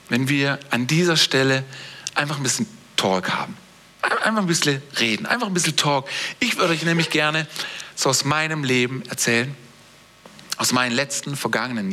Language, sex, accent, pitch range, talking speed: German, male, German, 145-210 Hz, 160 wpm